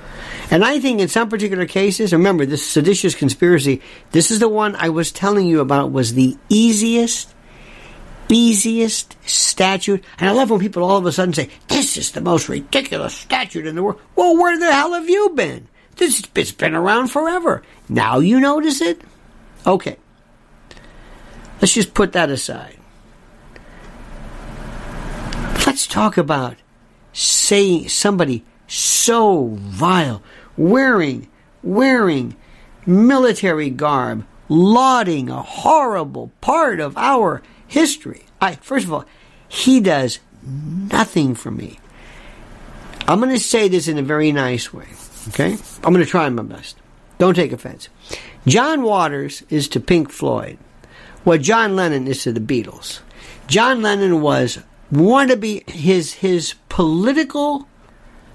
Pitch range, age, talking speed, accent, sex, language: 150-230 Hz, 60-79, 140 wpm, American, male, English